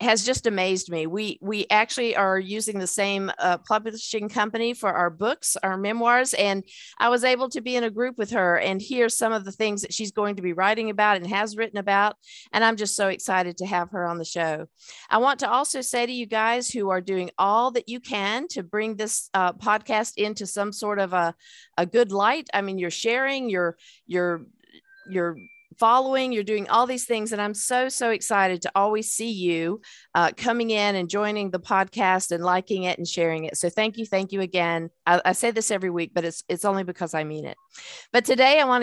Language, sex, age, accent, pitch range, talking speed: English, female, 50-69, American, 185-230 Hz, 225 wpm